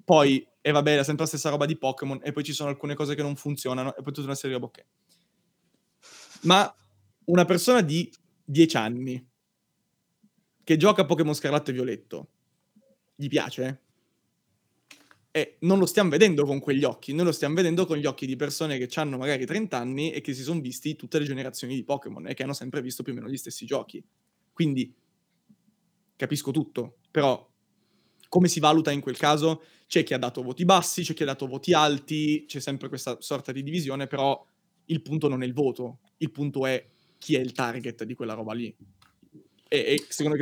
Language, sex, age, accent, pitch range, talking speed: Italian, male, 20-39, native, 135-170 Hz, 200 wpm